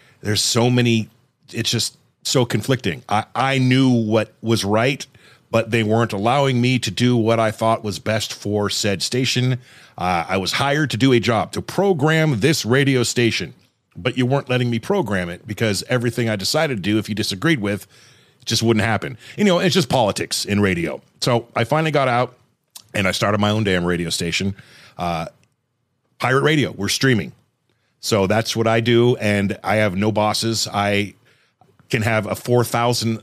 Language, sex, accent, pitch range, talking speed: English, male, American, 105-125 Hz, 185 wpm